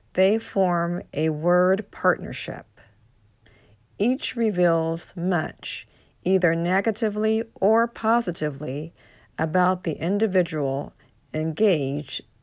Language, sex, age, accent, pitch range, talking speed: English, female, 50-69, American, 135-190 Hz, 75 wpm